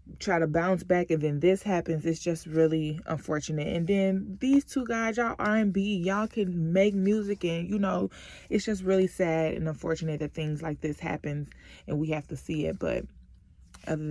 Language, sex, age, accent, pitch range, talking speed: English, female, 20-39, American, 150-195 Hz, 190 wpm